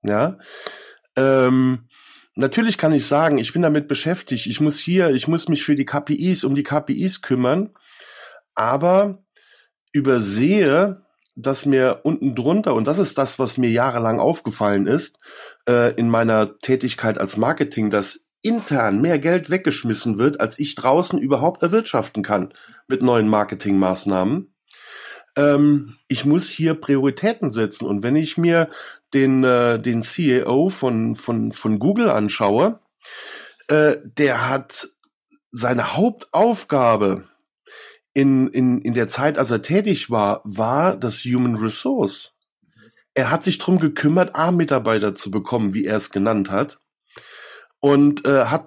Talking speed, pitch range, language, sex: 140 wpm, 115-165 Hz, German, male